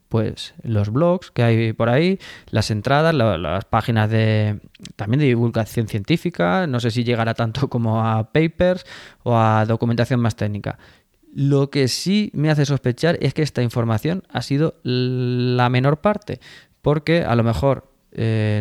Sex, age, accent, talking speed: male, 20-39, Spanish, 160 wpm